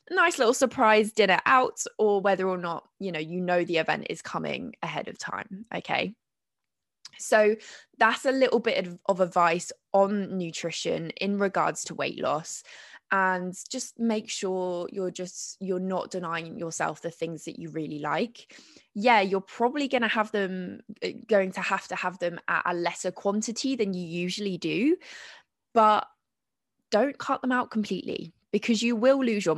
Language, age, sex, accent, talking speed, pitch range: English, 20-39, female, British, 170 wpm, 185-245 Hz